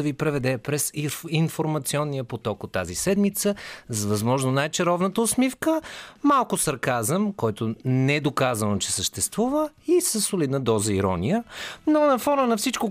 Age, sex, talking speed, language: 30-49, male, 145 wpm, Bulgarian